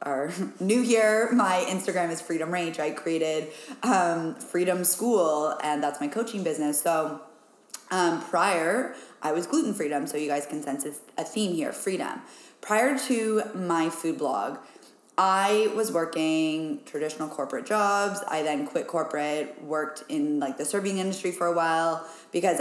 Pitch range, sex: 160-215 Hz, female